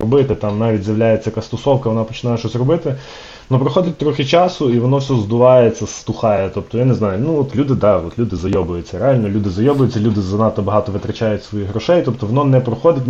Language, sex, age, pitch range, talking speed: Ukrainian, male, 20-39, 105-125 Hz, 195 wpm